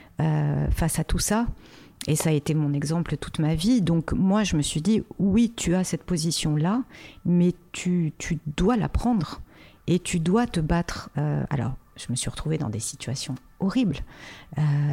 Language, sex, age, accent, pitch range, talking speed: French, female, 50-69, French, 145-185 Hz, 195 wpm